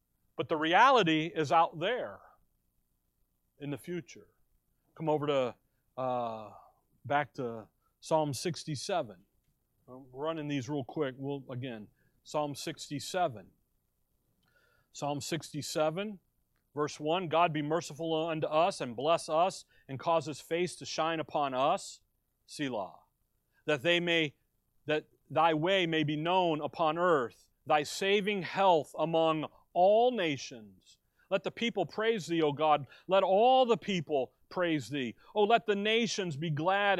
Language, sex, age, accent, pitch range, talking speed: English, male, 40-59, American, 150-190 Hz, 135 wpm